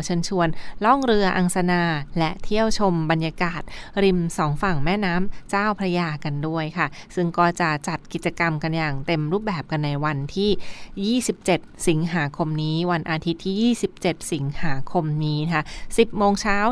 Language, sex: Thai, female